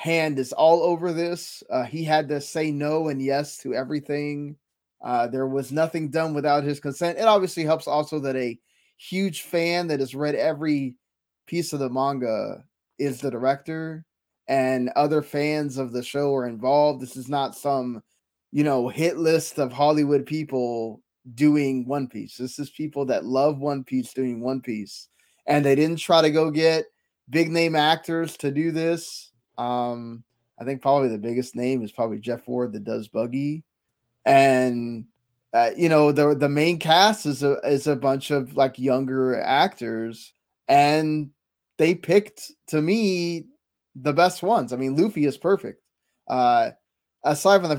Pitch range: 130-155 Hz